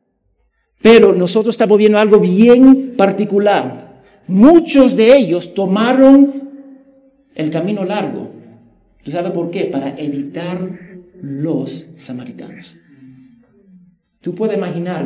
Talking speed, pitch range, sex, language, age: 100 wpm, 150-225 Hz, male, Spanish, 50-69